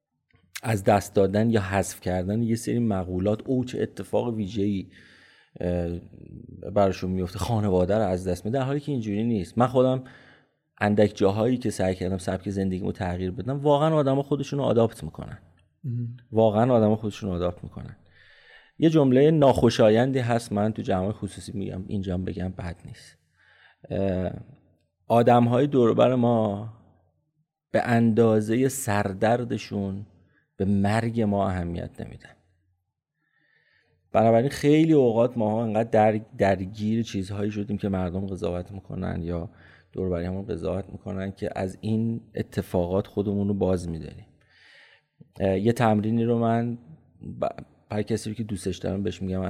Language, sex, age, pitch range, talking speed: Persian, male, 30-49, 95-115 Hz, 135 wpm